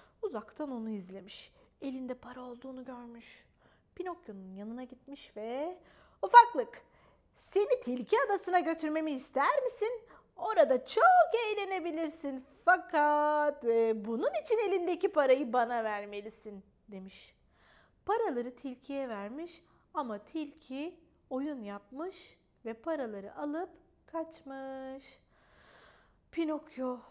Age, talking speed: 30-49, 95 wpm